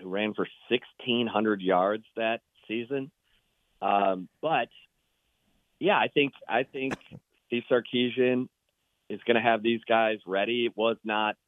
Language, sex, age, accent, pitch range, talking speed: English, male, 40-59, American, 100-115 Hz, 135 wpm